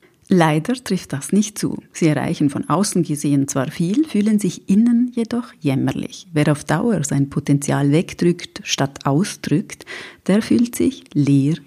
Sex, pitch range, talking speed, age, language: female, 140-190 Hz, 150 wpm, 30-49, German